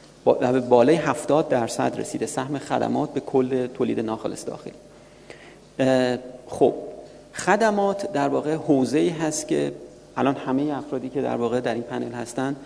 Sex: male